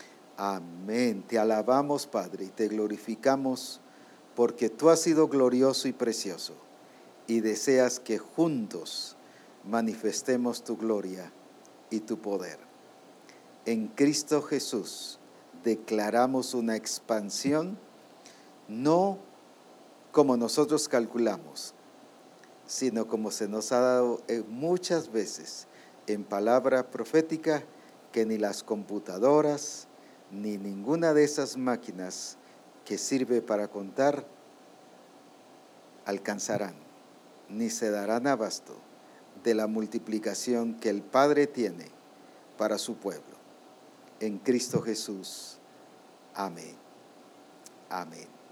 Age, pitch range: 50-69, 110-140 Hz